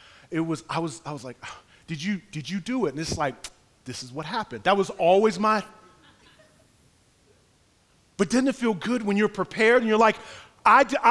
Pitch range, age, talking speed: 160-250 Hz, 30-49, 205 wpm